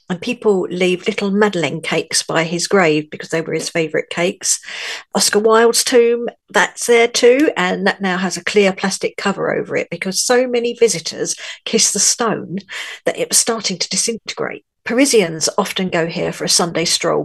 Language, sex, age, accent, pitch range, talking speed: English, female, 50-69, British, 170-225 Hz, 180 wpm